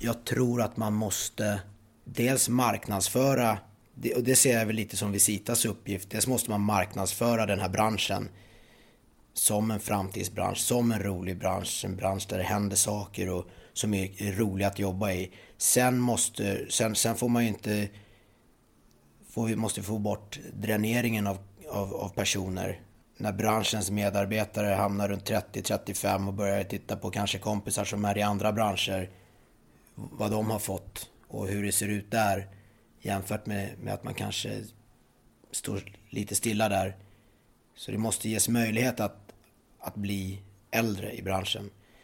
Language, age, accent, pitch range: English, 30-49, Swedish, 100-110 Hz